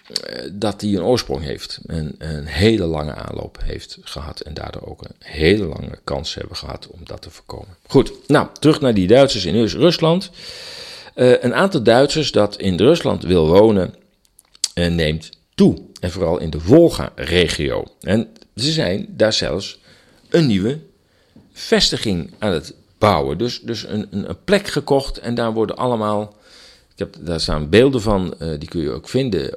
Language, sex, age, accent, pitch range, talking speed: Dutch, male, 50-69, Dutch, 80-120 Hz, 170 wpm